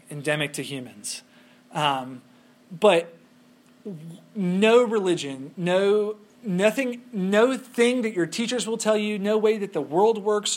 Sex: male